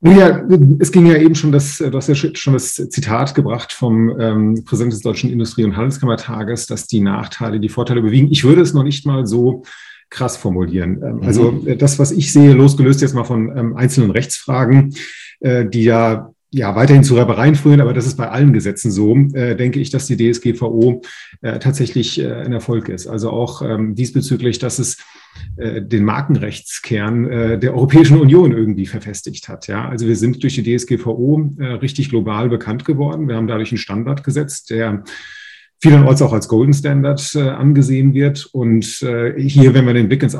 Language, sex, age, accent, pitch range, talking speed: German, male, 40-59, German, 115-140 Hz, 185 wpm